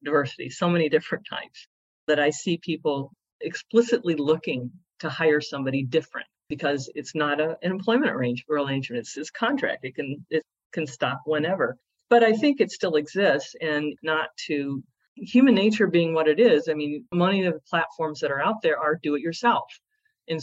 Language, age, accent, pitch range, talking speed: English, 50-69, American, 150-200 Hz, 165 wpm